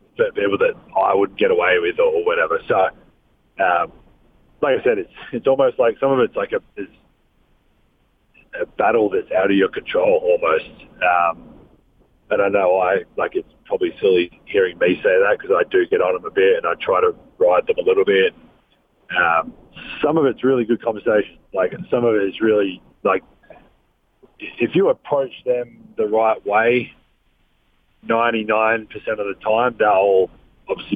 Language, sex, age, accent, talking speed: English, male, 40-59, Australian, 175 wpm